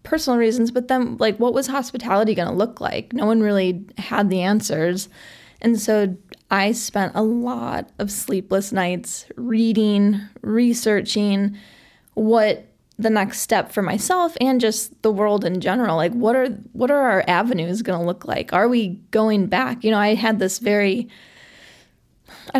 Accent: American